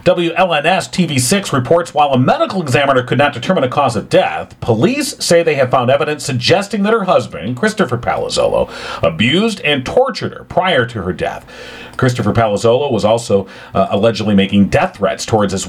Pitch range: 115-155 Hz